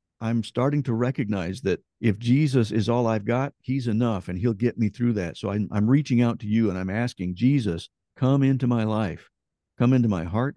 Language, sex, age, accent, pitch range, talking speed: English, male, 50-69, American, 110-130 Hz, 215 wpm